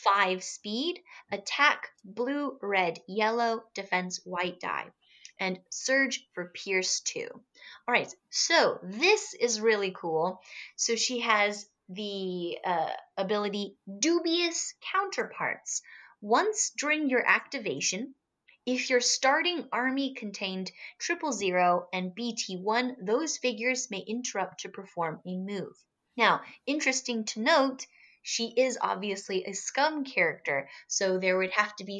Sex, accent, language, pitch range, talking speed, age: female, American, English, 185-270 Hz, 120 wpm, 30-49